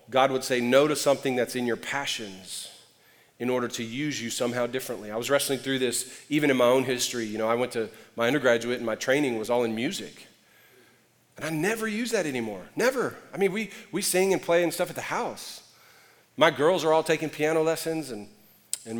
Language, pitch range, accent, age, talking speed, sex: English, 115-145 Hz, American, 40-59, 220 wpm, male